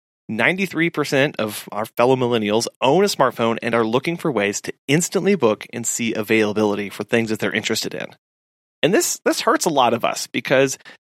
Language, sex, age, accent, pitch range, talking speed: English, male, 30-49, American, 110-140 Hz, 185 wpm